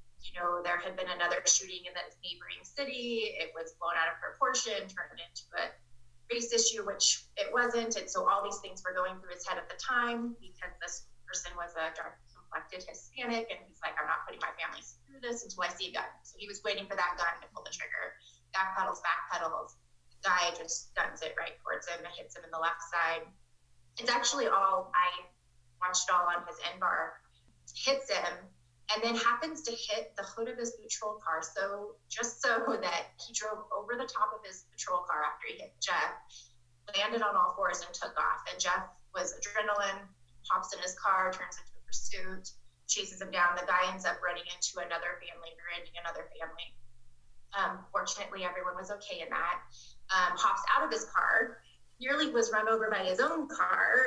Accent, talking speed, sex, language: American, 205 wpm, female, English